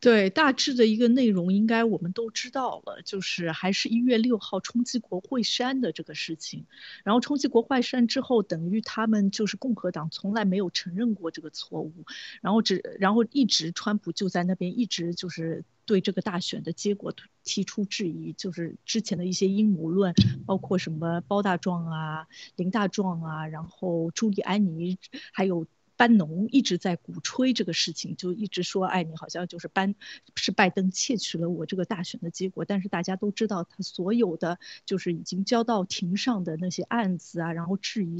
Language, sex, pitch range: Chinese, female, 175-225 Hz